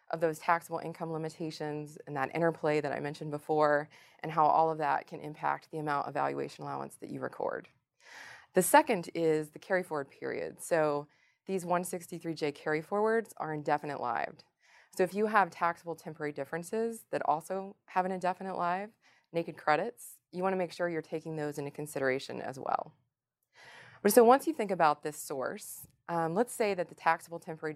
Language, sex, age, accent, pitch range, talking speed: English, female, 20-39, American, 150-180 Hz, 180 wpm